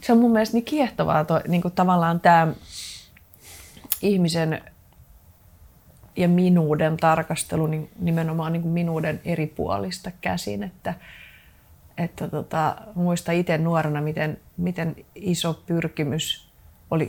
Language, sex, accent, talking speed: Finnish, female, native, 100 wpm